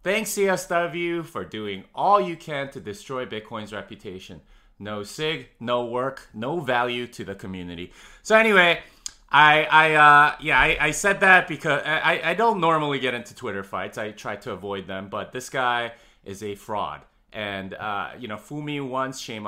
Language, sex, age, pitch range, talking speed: English, male, 30-49, 105-155 Hz, 180 wpm